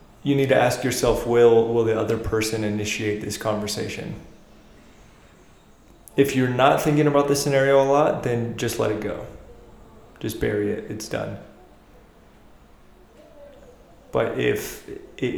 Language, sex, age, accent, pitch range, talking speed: English, male, 20-39, American, 110-125 Hz, 135 wpm